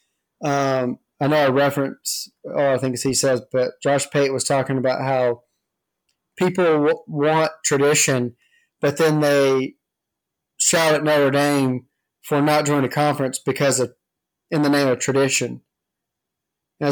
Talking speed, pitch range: 145 wpm, 135-160 Hz